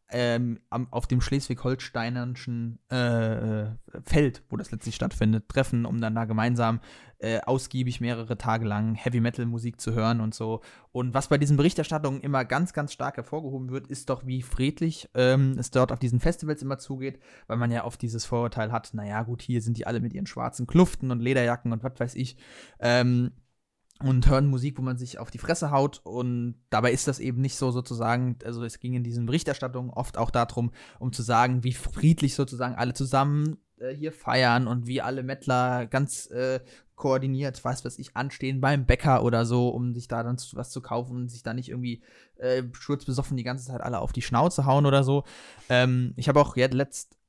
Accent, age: German, 20-39